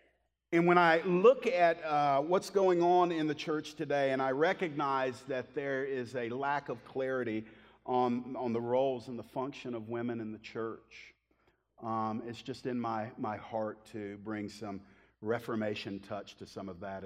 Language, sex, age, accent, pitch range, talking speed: English, male, 50-69, American, 120-175 Hz, 180 wpm